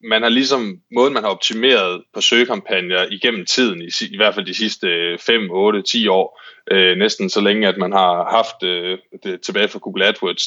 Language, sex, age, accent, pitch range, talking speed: Danish, male, 20-39, native, 100-135 Hz, 205 wpm